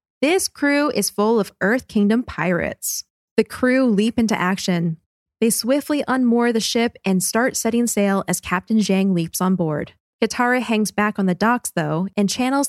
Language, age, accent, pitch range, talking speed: English, 20-39, American, 185-235 Hz, 175 wpm